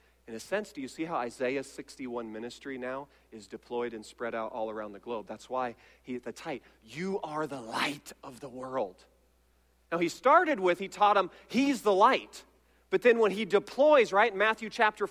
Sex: male